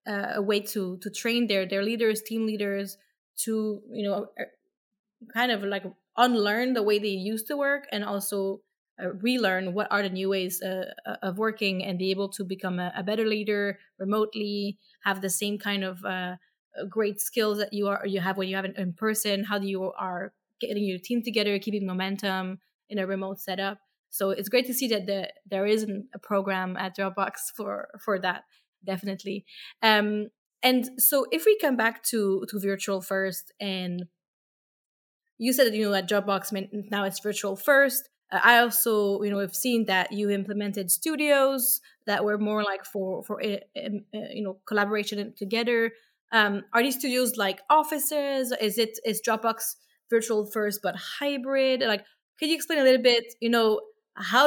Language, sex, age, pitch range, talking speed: English, female, 20-39, 195-230 Hz, 185 wpm